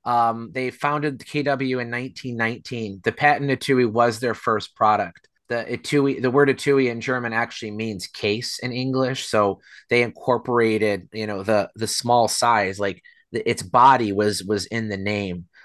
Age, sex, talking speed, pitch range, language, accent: 30-49, male, 170 wpm, 115-145 Hz, English, American